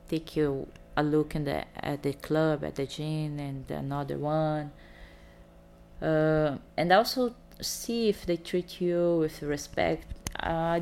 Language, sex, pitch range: English, female, 140-160 Hz